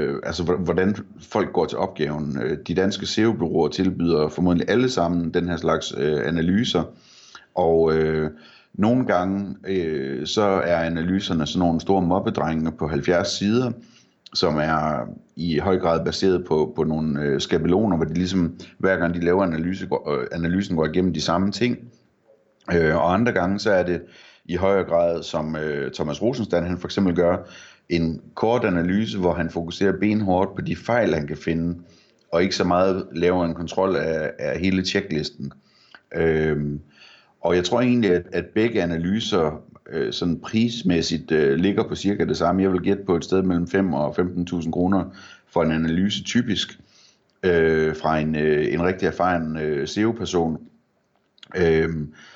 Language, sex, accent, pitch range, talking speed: Danish, male, native, 80-95 Hz, 165 wpm